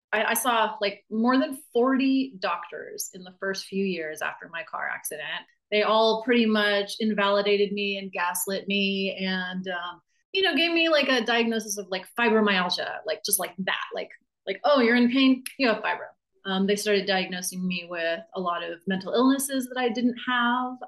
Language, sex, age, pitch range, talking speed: English, female, 30-49, 190-260 Hz, 185 wpm